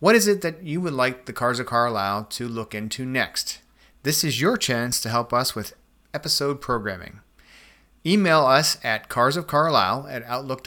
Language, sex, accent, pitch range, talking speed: English, male, American, 115-150 Hz, 165 wpm